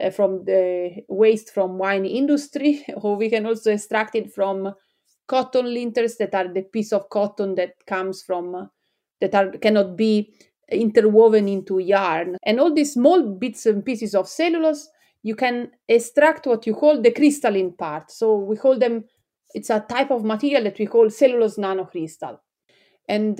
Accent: Italian